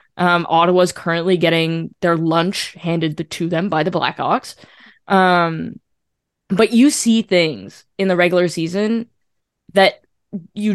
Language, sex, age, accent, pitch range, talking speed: English, female, 10-29, American, 165-190 Hz, 135 wpm